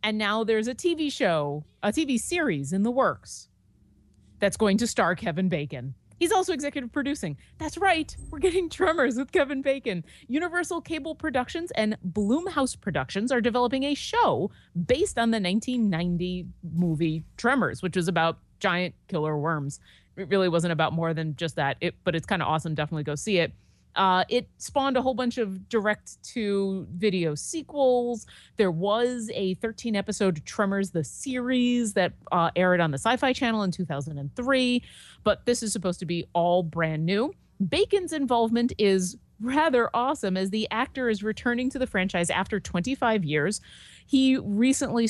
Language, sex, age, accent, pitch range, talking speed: English, female, 30-49, American, 170-260 Hz, 160 wpm